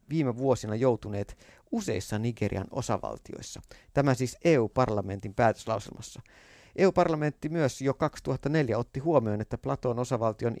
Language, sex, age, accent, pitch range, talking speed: Finnish, male, 50-69, native, 110-140 Hz, 110 wpm